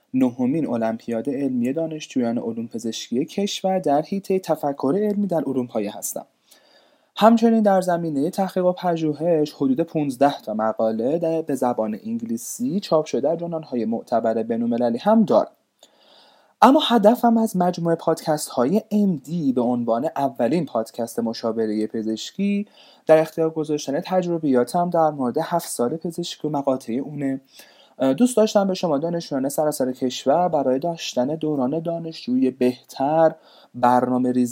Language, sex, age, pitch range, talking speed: Persian, male, 30-49, 125-170 Hz, 130 wpm